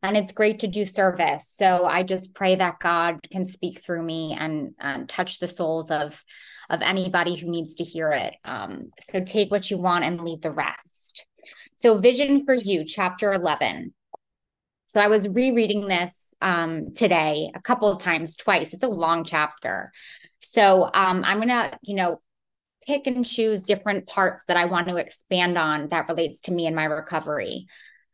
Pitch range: 170-215 Hz